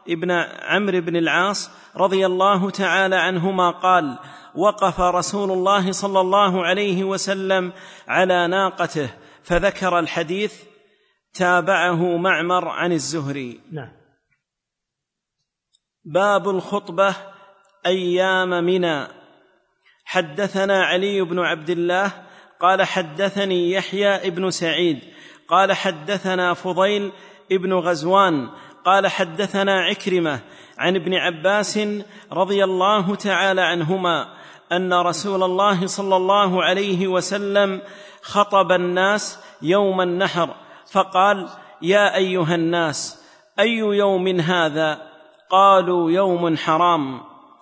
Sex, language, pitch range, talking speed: male, Arabic, 175-195 Hz, 95 wpm